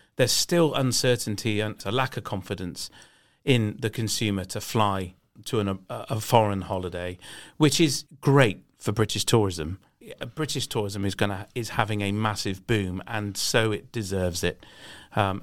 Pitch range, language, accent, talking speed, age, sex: 105-135 Hz, English, British, 155 wpm, 40-59, male